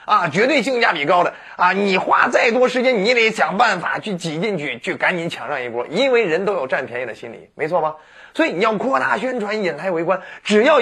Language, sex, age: Chinese, male, 30-49